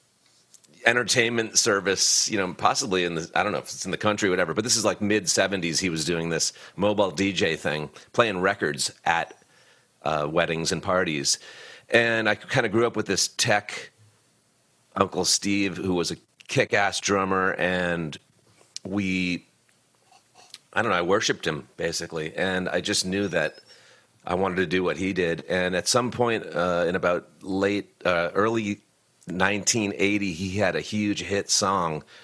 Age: 40-59